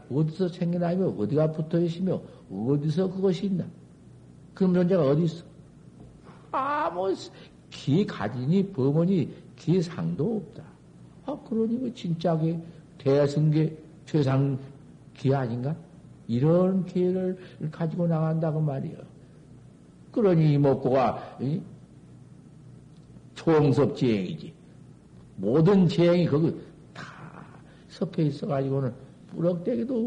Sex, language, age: male, Korean, 60-79